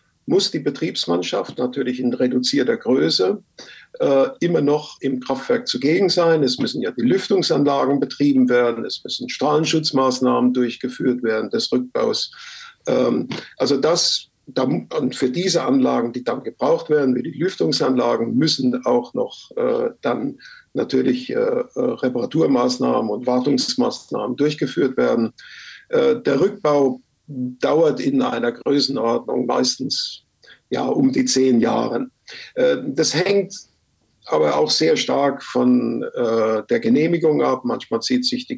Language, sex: German, male